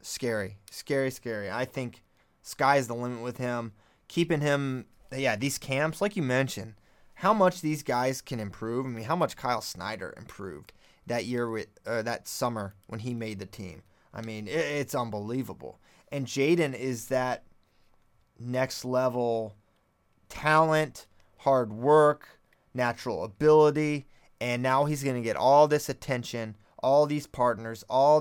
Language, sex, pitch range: English, male, 115-150 Hz